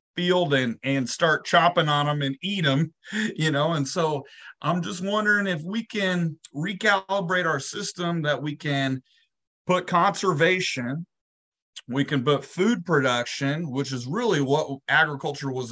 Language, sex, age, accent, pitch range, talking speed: English, male, 30-49, American, 130-165 Hz, 150 wpm